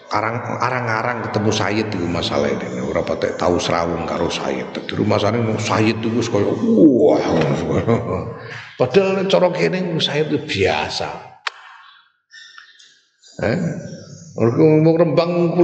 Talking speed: 105 wpm